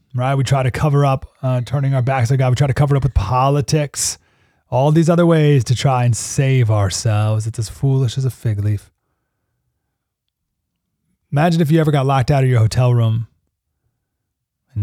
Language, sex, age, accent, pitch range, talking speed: English, male, 30-49, American, 110-140 Hz, 200 wpm